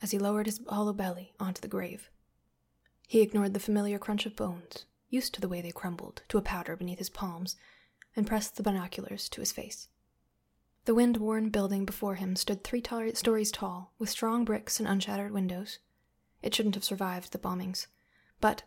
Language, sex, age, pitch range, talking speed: English, female, 20-39, 190-215 Hz, 185 wpm